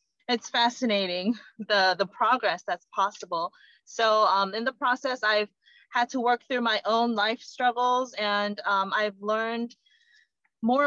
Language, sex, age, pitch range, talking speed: English, female, 20-39, 205-245 Hz, 145 wpm